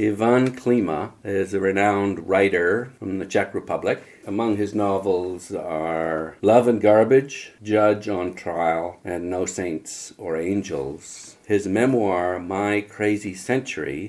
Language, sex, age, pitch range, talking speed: English, male, 50-69, 80-105 Hz, 130 wpm